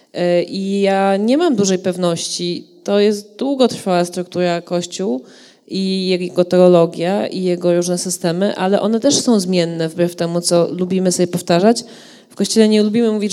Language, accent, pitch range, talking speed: Polish, native, 190-235 Hz, 155 wpm